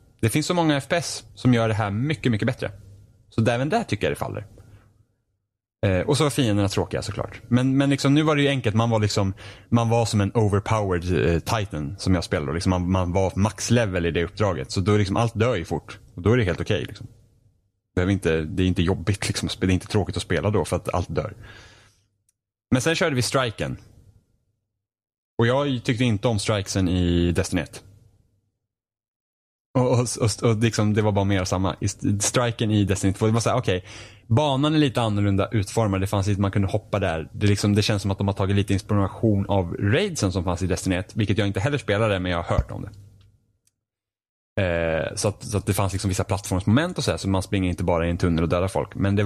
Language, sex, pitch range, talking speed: Swedish, male, 95-115 Hz, 225 wpm